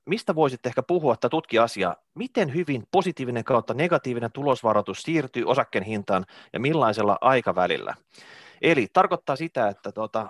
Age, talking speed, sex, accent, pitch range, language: 30-49, 140 wpm, male, native, 120-160 Hz, Finnish